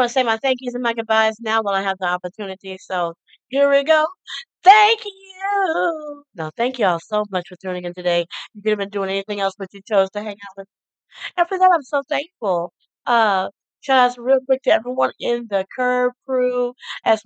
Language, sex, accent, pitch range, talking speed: English, female, American, 190-240 Hz, 220 wpm